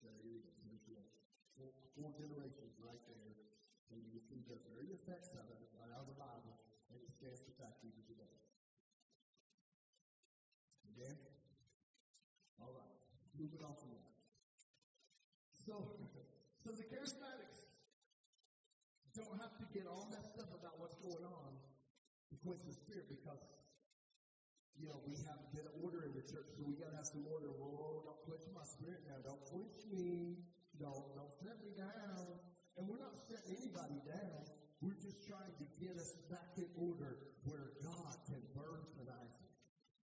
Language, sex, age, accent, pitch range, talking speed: English, male, 50-69, American, 140-190 Hz, 160 wpm